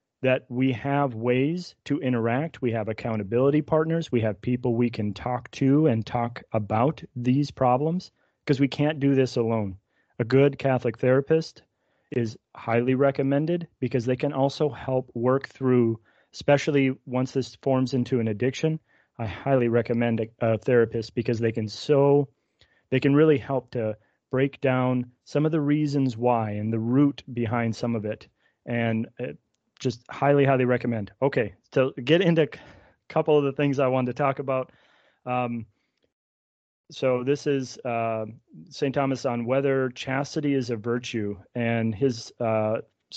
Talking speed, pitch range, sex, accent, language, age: 160 wpm, 120-140 Hz, male, American, English, 30-49